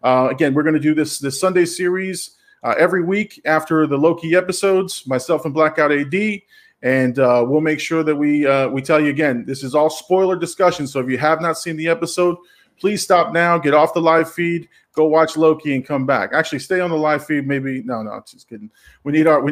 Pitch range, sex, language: 140-170 Hz, male, English